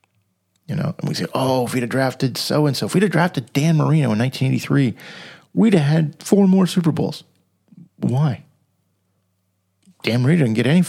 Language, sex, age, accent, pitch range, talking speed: English, male, 40-59, American, 100-150 Hz, 175 wpm